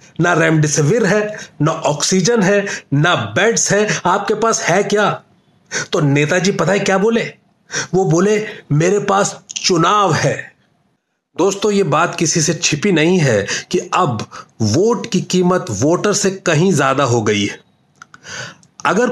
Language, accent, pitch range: Hindi, native, 155-200 Hz